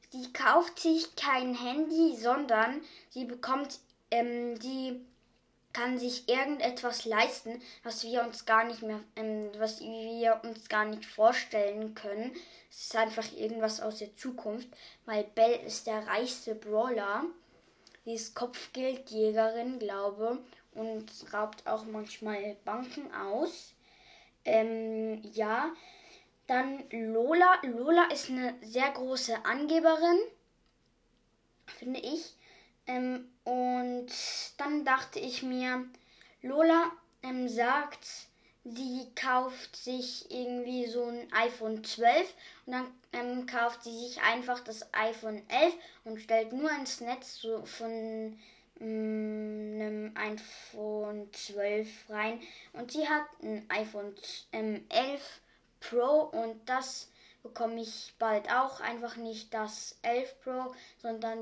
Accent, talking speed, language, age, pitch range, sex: German, 115 wpm, German, 10-29, 220-260 Hz, female